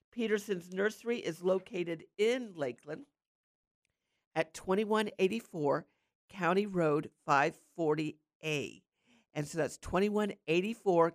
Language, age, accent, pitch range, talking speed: English, 50-69, American, 155-200 Hz, 80 wpm